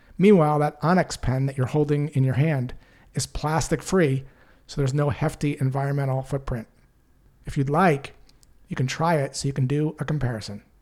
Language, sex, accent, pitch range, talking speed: English, male, American, 130-155 Hz, 170 wpm